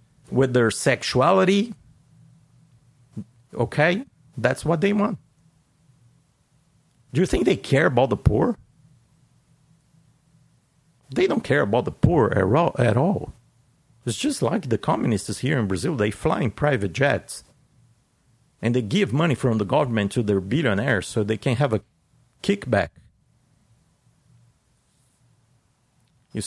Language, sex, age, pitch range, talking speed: English, male, 50-69, 120-150 Hz, 120 wpm